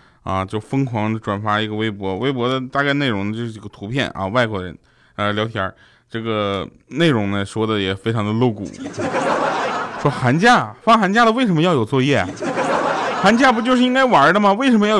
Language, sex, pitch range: Chinese, male, 110-155 Hz